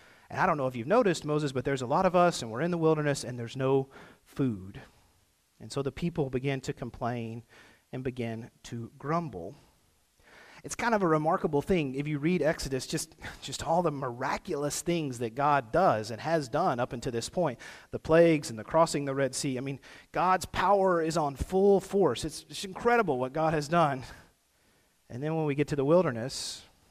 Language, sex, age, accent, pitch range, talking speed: English, male, 40-59, American, 120-165 Hz, 205 wpm